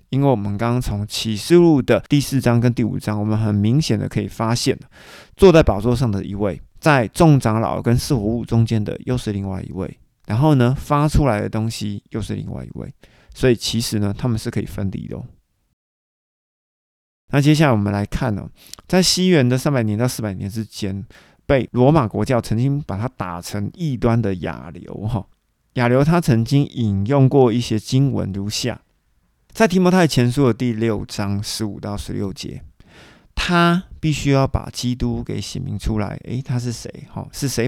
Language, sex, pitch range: Chinese, male, 105-135 Hz